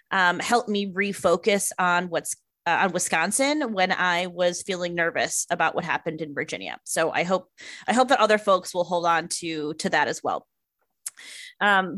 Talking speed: 180 wpm